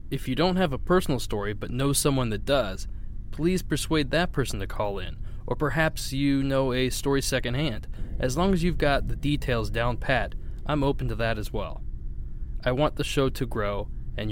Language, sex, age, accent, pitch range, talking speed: English, male, 20-39, American, 100-130 Hz, 200 wpm